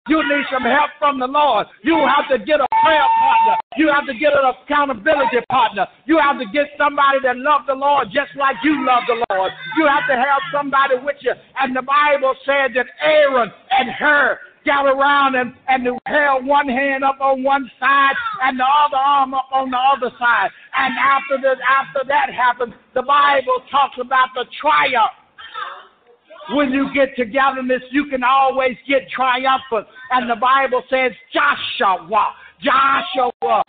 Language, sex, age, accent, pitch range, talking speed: English, male, 60-79, American, 240-285 Hz, 175 wpm